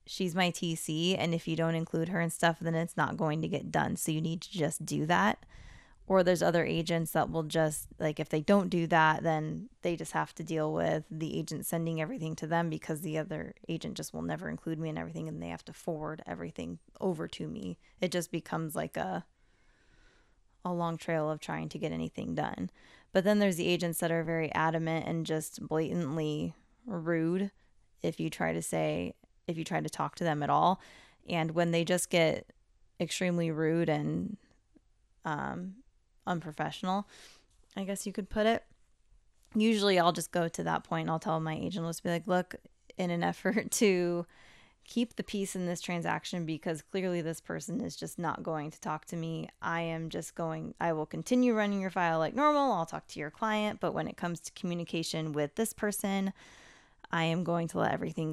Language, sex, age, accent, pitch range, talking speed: English, female, 20-39, American, 155-180 Hz, 205 wpm